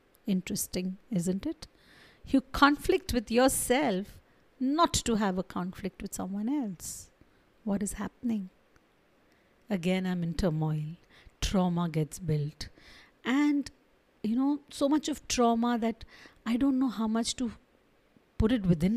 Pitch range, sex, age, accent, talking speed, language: 185-245 Hz, female, 50-69, Indian, 135 wpm, English